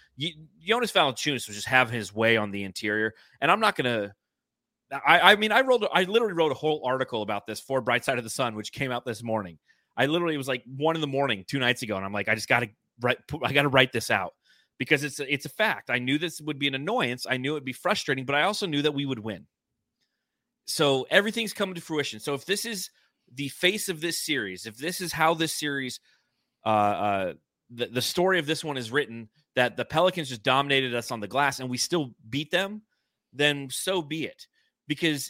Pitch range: 120-165 Hz